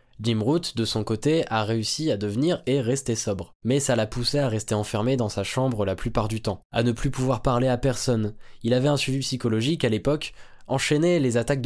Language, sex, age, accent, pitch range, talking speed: French, male, 20-39, French, 115-140 Hz, 220 wpm